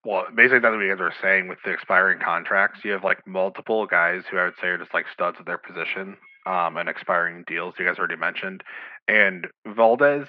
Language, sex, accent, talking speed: English, male, American, 220 wpm